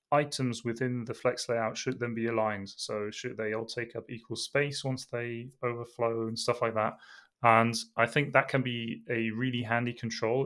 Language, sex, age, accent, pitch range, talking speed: English, male, 20-39, British, 110-130 Hz, 195 wpm